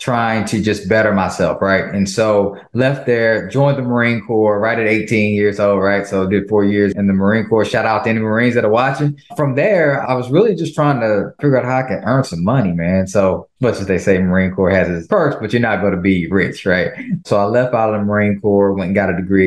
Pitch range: 95-110 Hz